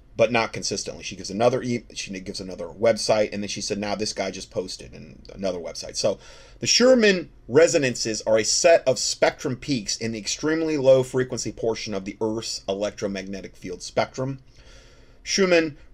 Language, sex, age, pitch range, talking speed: English, male, 30-49, 110-145 Hz, 170 wpm